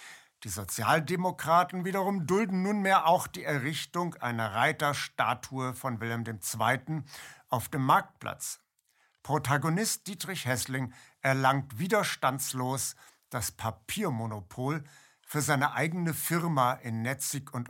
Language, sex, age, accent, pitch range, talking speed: German, male, 60-79, German, 130-160 Hz, 100 wpm